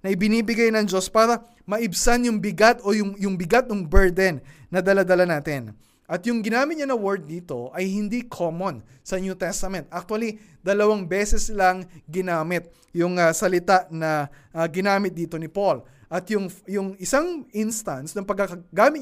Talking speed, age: 160 wpm, 20-39